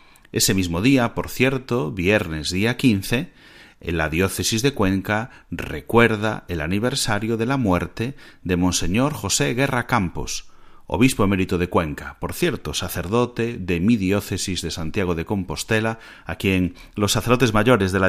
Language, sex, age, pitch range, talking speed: Spanish, male, 30-49, 85-105 Hz, 150 wpm